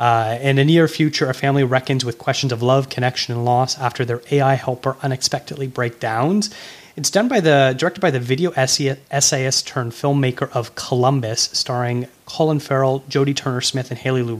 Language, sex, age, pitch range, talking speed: English, male, 30-49, 120-140 Hz, 180 wpm